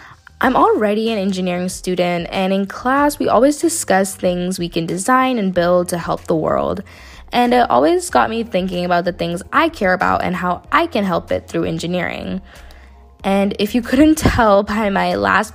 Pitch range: 175-230 Hz